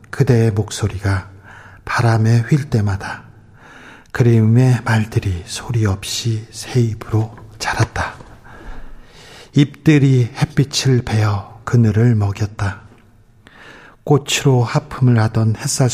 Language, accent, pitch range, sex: Korean, native, 105-125 Hz, male